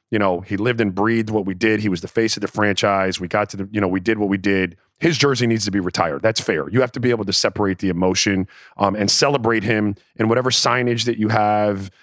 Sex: male